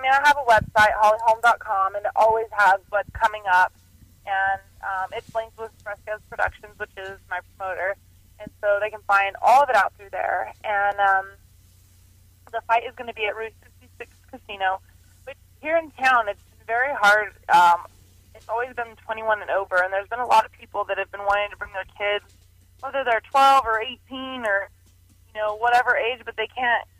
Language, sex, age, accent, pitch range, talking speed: English, female, 20-39, American, 185-230 Hz, 200 wpm